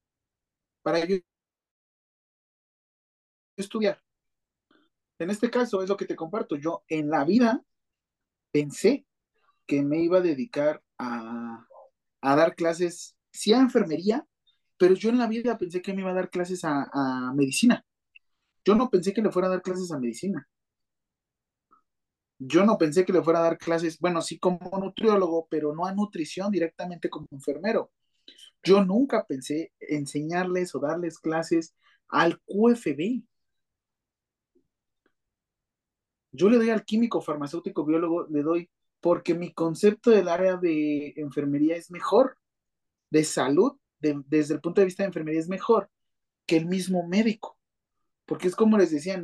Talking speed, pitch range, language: 150 wpm, 155-195 Hz, Spanish